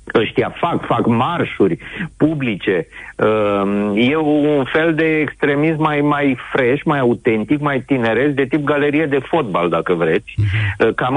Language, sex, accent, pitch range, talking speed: Romanian, male, native, 110-155 Hz, 140 wpm